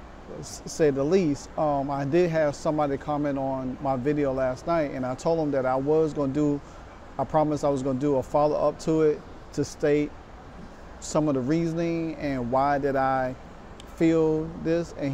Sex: male